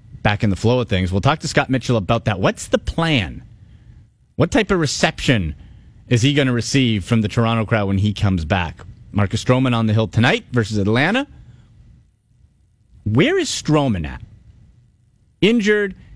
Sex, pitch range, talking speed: male, 110-165 Hz, 170 wpm